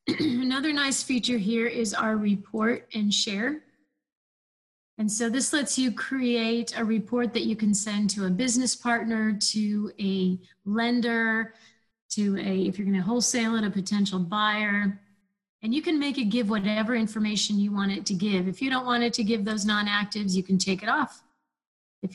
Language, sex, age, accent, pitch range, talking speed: English, female, 30-49, American, 195-230 Hz, 180 wpm